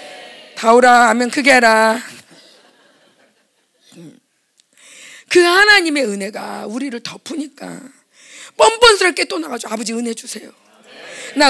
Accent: native